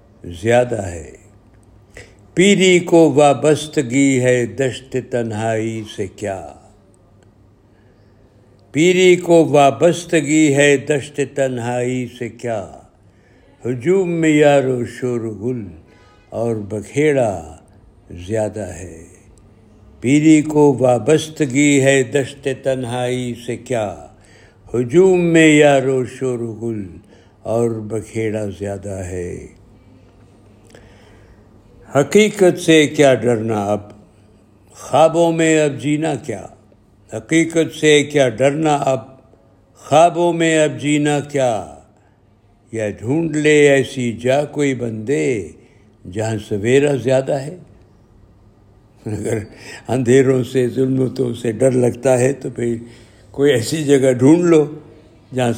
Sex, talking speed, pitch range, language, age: male, 95 wpm, 105-145 Hz, Urdu, 60-79